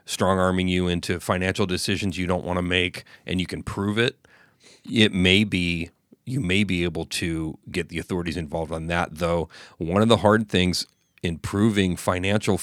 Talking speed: 185 wpm